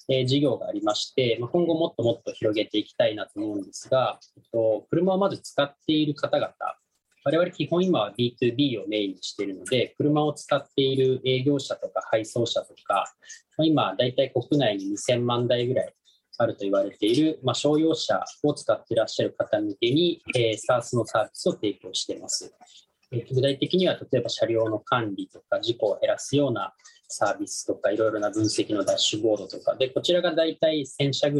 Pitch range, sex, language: 120-195 Hz, male, Japanese